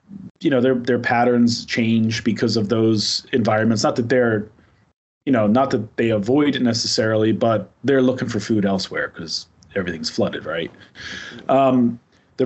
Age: 30-49